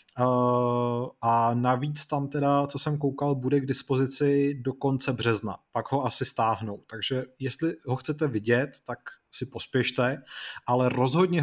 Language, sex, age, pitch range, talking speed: Czech, male, 30-49, 125-150 Hz, 140 wpm